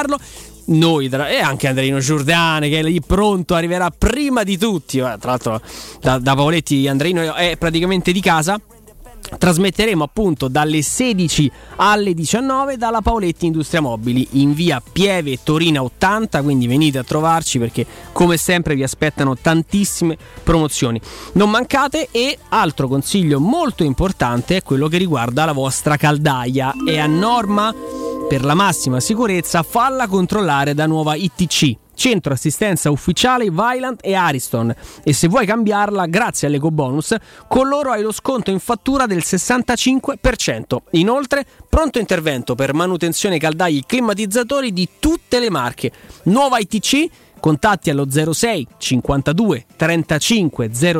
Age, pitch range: 20-39, 145-215 Hz